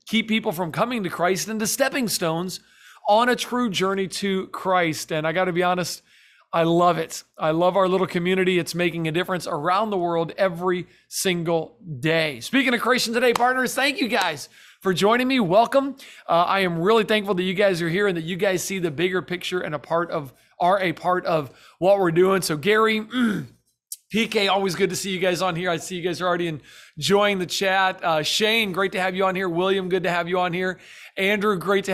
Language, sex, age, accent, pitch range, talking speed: English, male, 40-59, American, 175-220 Hz, 225 wpm